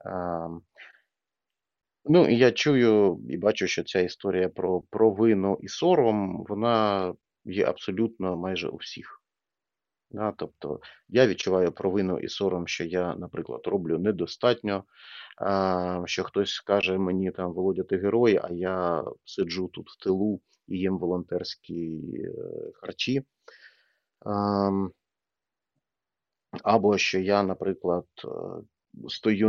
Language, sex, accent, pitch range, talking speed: Ukrainian, male, native, 90-110 Hz, 115 wpm